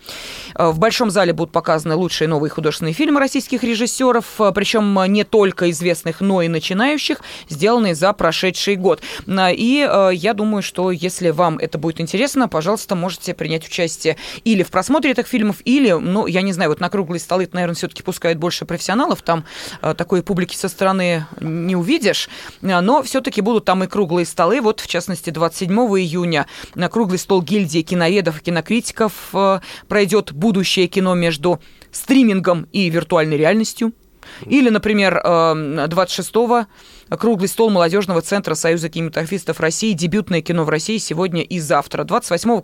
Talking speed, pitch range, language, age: 150 wpm, 170-215 Hz, Russian, 20-39